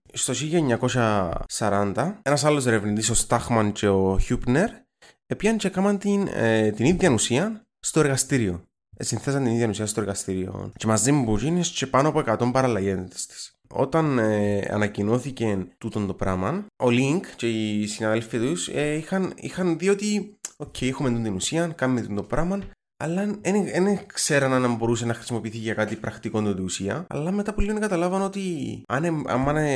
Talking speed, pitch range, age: 155 wpm, 105-165 Hz, 20-39